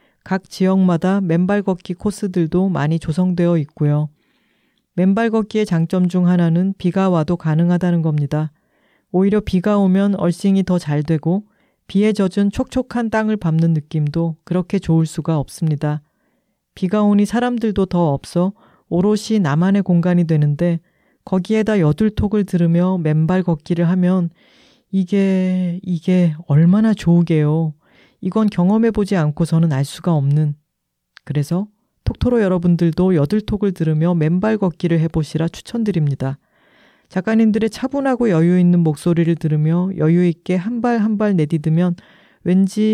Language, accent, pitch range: Korean, native, 165-205 Hz